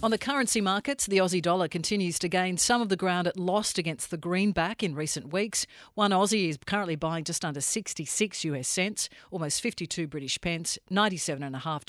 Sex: female